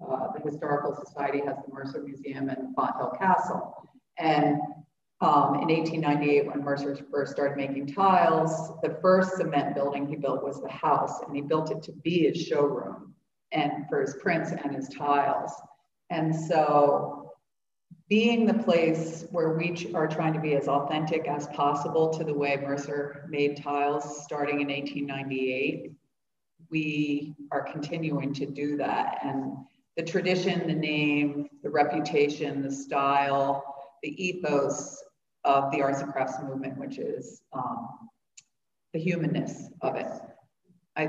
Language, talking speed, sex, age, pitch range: English, 150 wpm, female, 40-59, 140-165 Hz